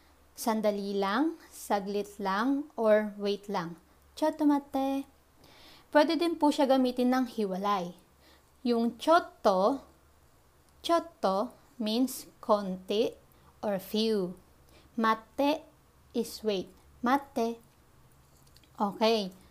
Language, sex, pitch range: Japanese, female, 205-275 Hz